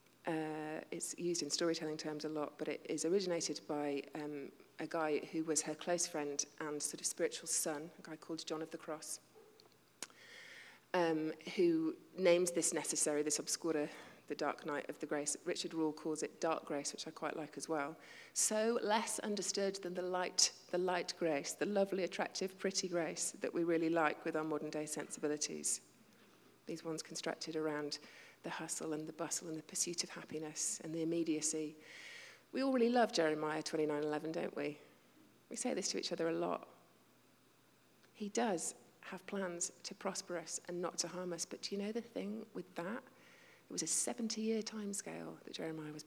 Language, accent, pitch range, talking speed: English, British, 155-185 Hz, 185 wpm